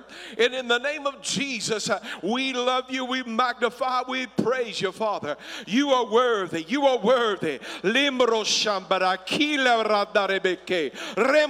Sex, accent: male, American